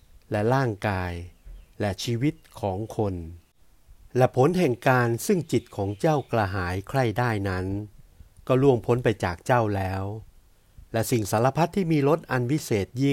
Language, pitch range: Thai, 100-130 Hz